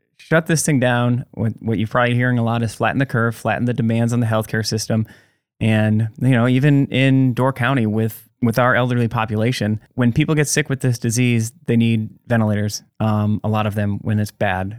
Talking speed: 205 wpm